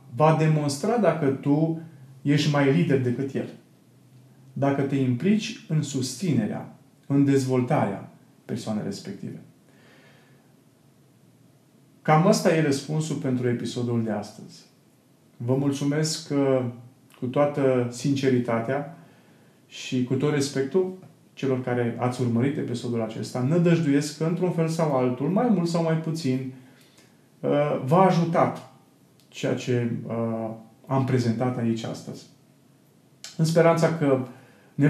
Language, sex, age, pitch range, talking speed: Romanian, male, 30-49, 125-155 Hz, 110 wpm